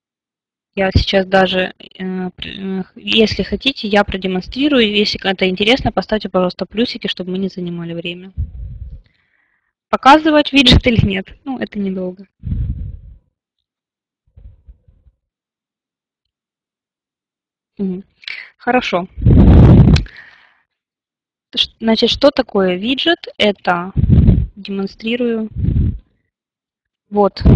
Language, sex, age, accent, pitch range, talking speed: Russian, female, 20-39, native, 185-230 Hz, 70 wpm